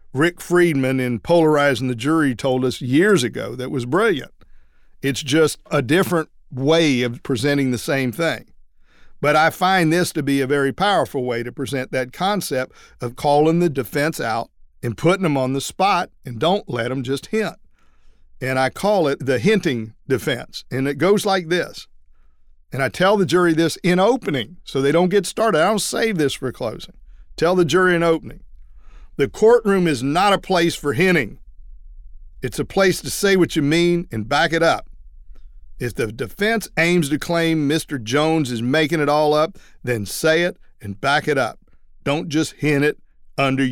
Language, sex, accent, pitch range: English, male, American, 125-170 Hz